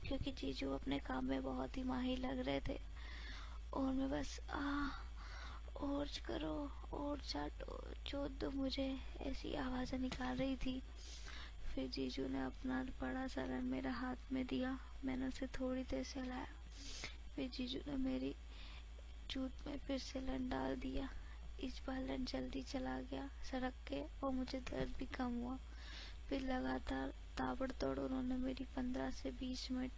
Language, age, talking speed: Hindi, 20-39, 145 wpm